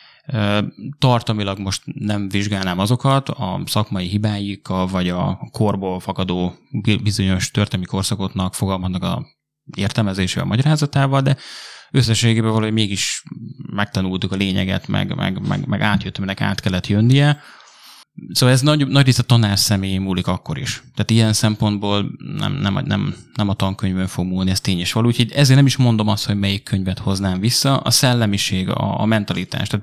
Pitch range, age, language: 95-125 Hz, 20-39, Hungarian